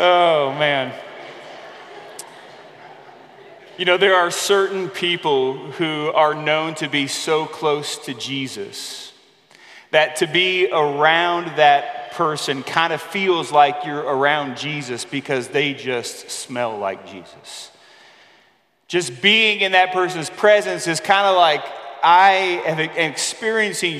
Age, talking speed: 30-49, 125 wpm